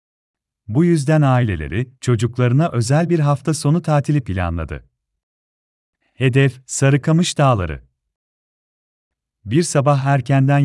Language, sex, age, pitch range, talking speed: Turkish, male, 40-59, 90-145 Hz, 90 wpm